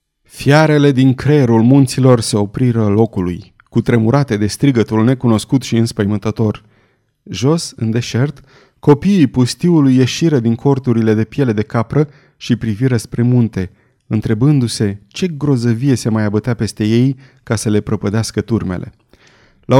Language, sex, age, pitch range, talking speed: Romanian, male, 30-49, 110-140 Hz, 135 wpm